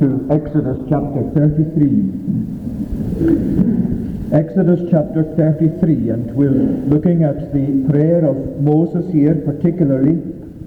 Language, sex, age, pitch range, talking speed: English, male, 50-69, 140-160 Hz, 95 wpm